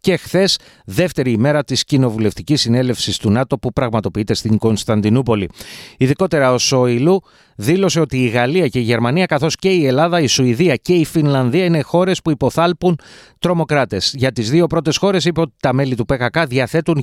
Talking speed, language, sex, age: 175 wpm, Greek, male, 30-49